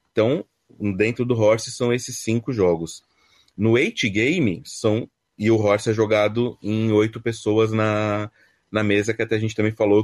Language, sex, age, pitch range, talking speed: Portuguese, male, 30-49, 100-120 Hz, 165 wpm